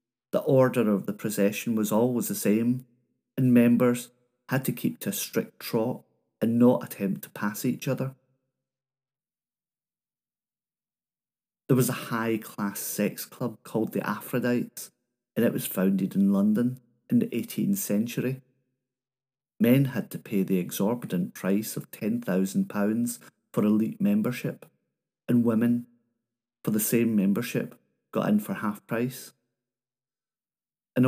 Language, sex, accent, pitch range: English, male, British, 110-130 Hz